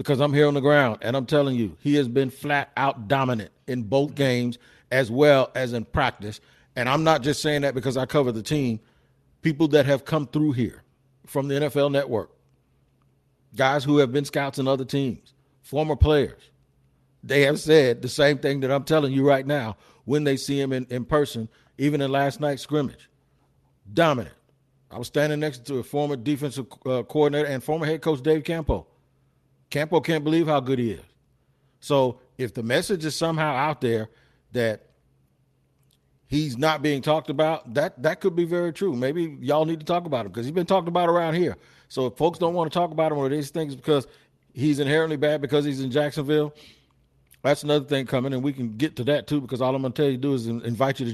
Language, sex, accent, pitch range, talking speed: English, male, American, 130-150 Hz, 210 wpm